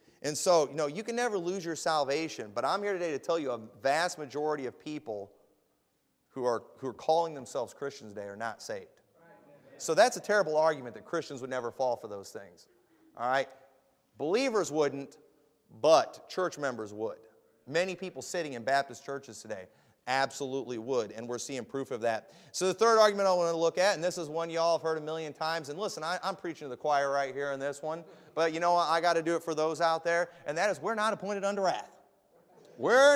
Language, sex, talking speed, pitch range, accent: English, male, 225 wpm, 150-210 Hz, American